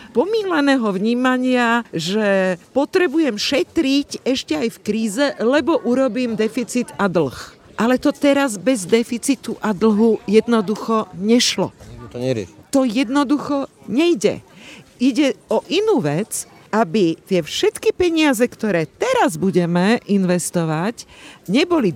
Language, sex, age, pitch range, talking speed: Slovak, female, 50-69, 200-260 Hz, 105 wpm